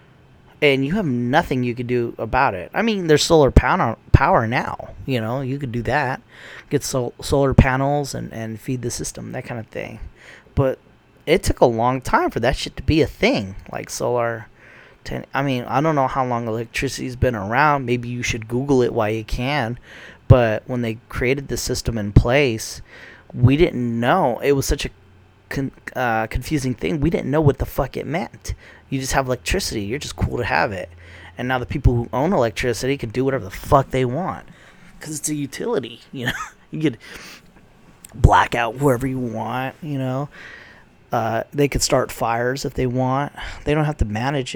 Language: English